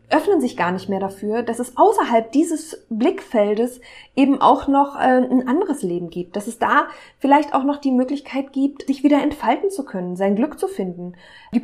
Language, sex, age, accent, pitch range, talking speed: German, female, 20-39, German, 185-240 Hz, 195 wpm